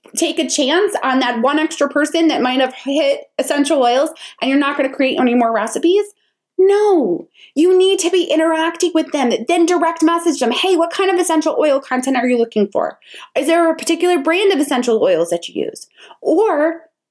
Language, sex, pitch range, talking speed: English, female, 240-330 Hz, 205 wpm